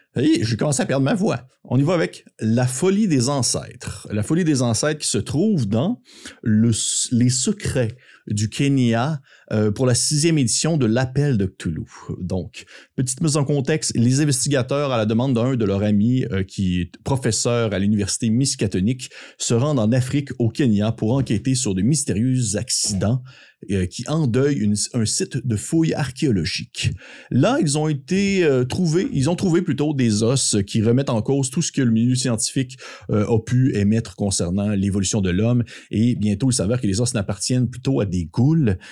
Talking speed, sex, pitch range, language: 180 wpm, male, 105-130 Hz, French